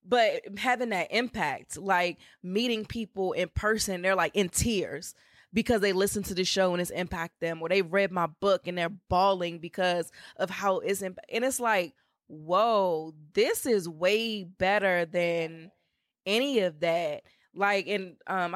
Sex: female